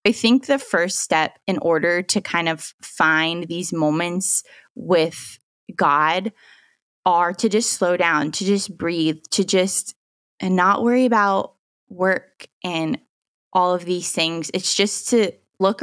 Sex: female